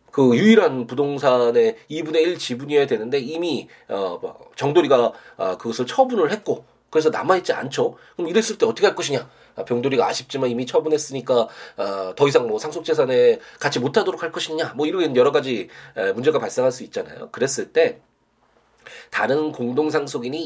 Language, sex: Korean, male